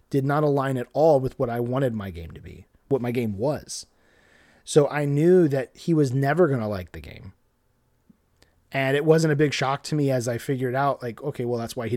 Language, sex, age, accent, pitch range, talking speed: English, male, 30-49, American, 120-155 Hz, 235 wpm